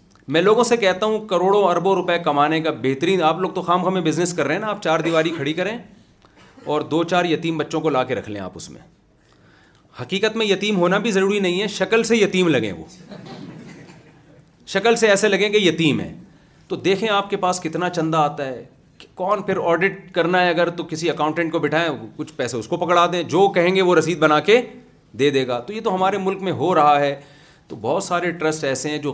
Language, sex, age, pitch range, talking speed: Urdu, male, 40-59, 145-180 Hz, 230 wpm